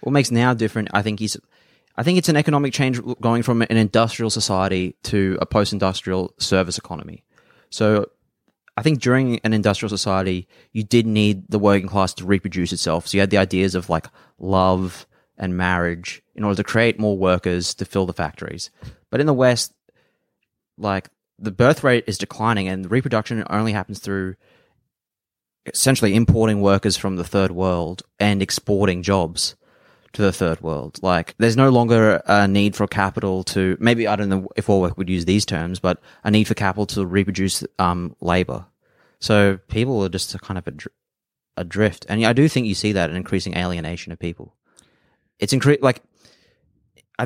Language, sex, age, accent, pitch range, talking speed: English, male, 20-39, Australian, 95-110 Hz, 180 wpm